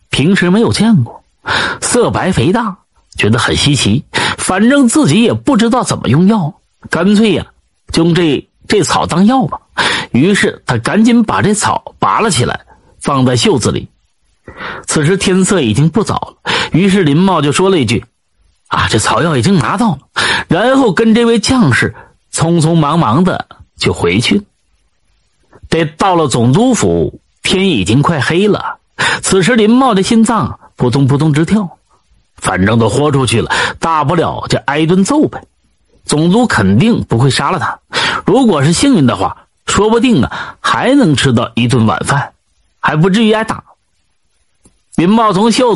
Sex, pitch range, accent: male, 145-220 Hz, native